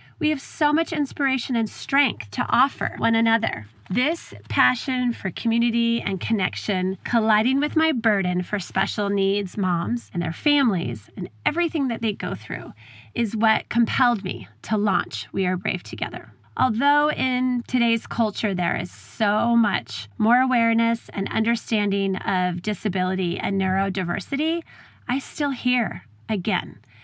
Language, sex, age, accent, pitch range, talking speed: English, female, 30-49, American, 185-245 Hz, 140 wpm